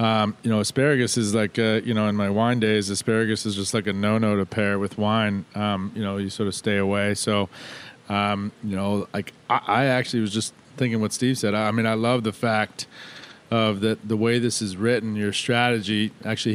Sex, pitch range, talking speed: male, 105-115 Hz, 220 wpm